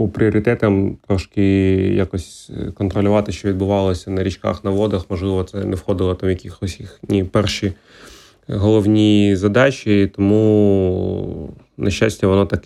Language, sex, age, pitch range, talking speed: Ukrainian, male, 20-39, 95-105 Hz, 120 wpm